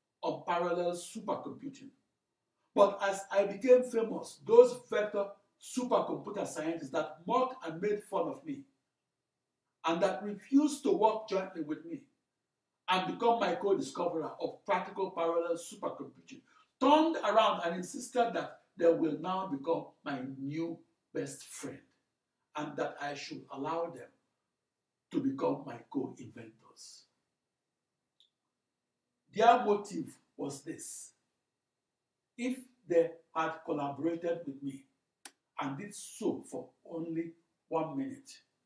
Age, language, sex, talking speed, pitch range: 60-79, English, male, 115 wpm, 155-230 Hz